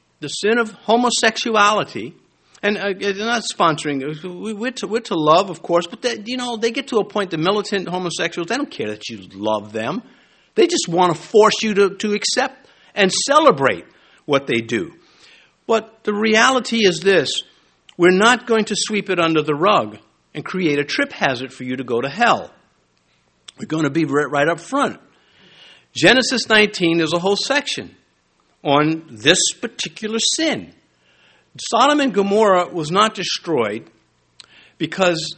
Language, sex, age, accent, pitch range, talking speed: English, male, 50-69, American, 155-220 Hz, 170 wpm